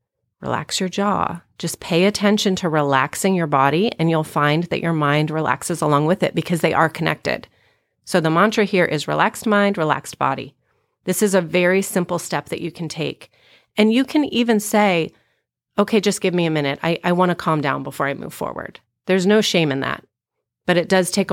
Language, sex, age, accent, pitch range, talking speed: English, female, 30-49, American, 150-195 Hz, 205 wpm